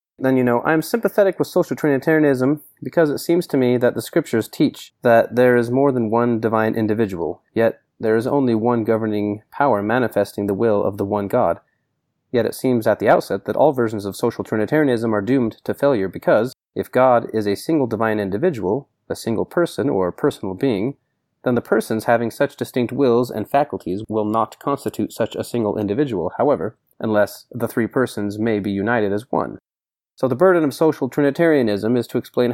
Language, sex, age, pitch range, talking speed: English, male, 30-49, 105-130 Hz, 195 wpm